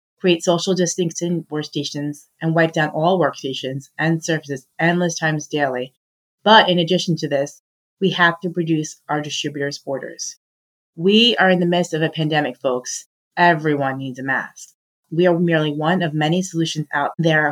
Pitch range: 145-175 Hz